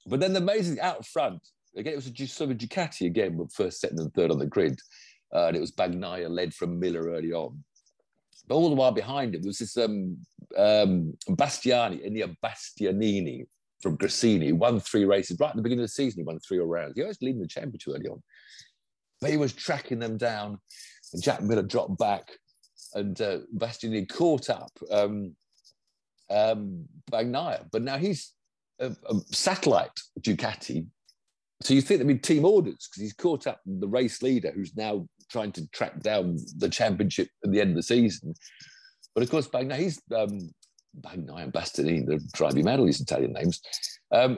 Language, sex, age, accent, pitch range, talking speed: English, male, 50-69, British, 95-135 Hz, 195 wpm